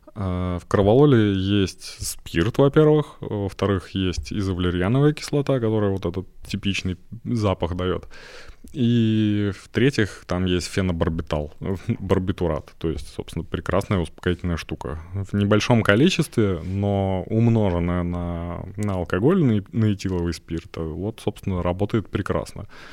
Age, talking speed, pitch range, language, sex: 20-39, 115 wpm, 85-105 Hz, Russian, male